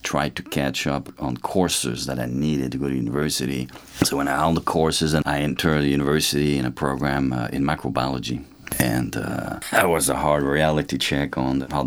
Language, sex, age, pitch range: English, male, 40-59, 70-80 Hz